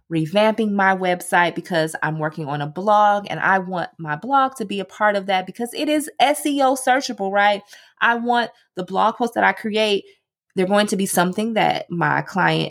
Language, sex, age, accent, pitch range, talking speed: English, female, 20-39, American, 165-220 Hz, 200 wpm